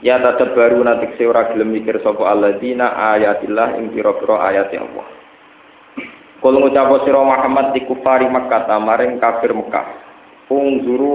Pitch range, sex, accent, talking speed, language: 110-130 Hz, male, native, 150 wpm, Indonesian